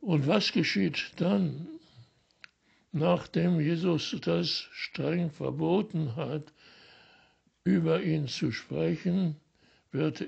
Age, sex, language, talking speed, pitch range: 60-79, male, German, 90 wpm, 140-170 Hz